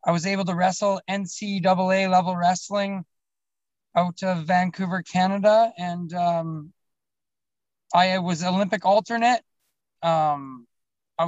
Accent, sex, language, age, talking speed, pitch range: American, male, English, 20-39, 100 wpm, 175-200 Hz